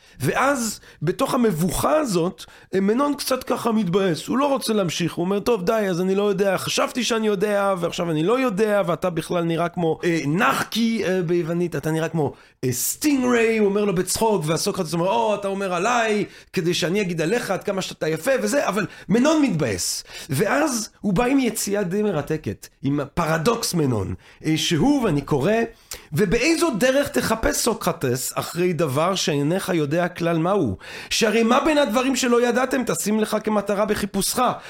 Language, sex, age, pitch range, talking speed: Hebrew, male, 30-49, 170-235 Hz, 170 wpm